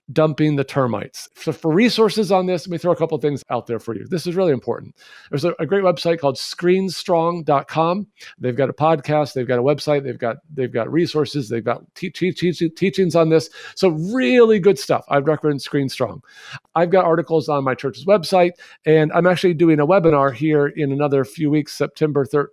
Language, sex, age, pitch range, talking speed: English, male, 50-69, 130-170 Hz, 205 wpm